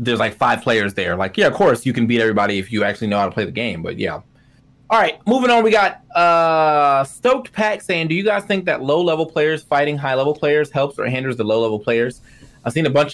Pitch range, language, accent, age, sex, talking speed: 110-150 Hz, English, American, 20-39, male, 245 wpm